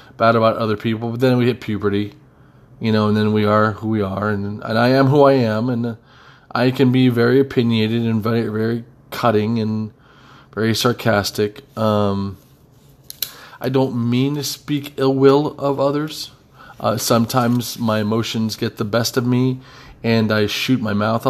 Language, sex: English, male